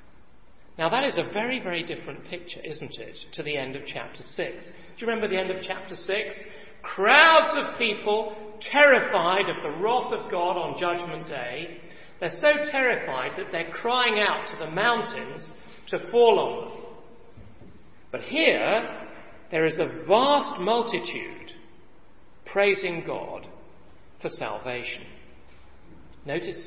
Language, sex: English, male